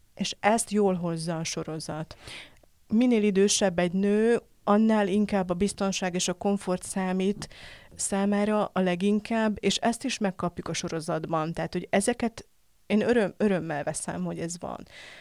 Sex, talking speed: female, 145 wpm